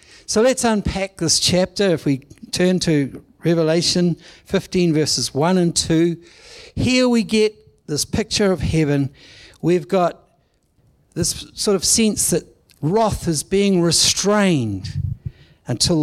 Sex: male